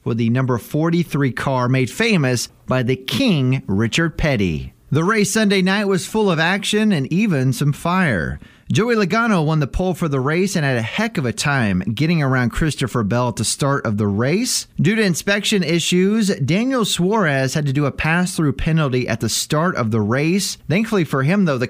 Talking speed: 200 wpm